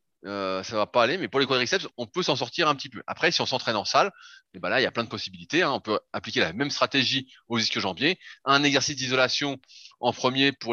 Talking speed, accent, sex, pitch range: 265 wpm, French, male, 105-135 Hz